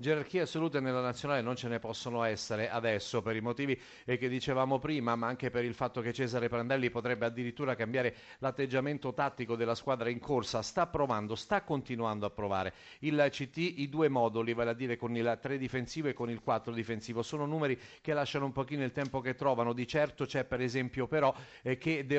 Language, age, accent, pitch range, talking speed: Italian, 40-59, native, 120-140 Hz, 200 wpm